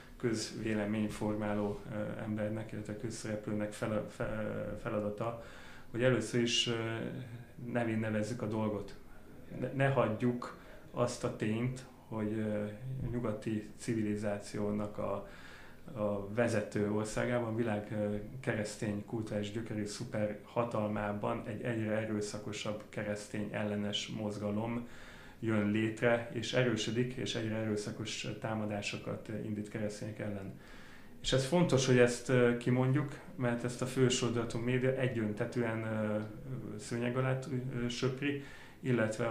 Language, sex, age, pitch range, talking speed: Hungarian, male, 30-49, 105-120 Hz, 100 wpm